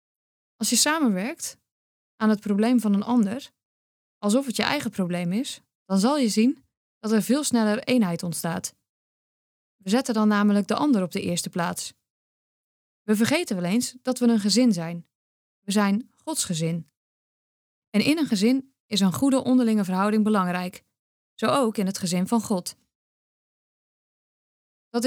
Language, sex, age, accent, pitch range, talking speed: Dutch, female, 20-39, Dutch, 190-245 Hz, 160 wpm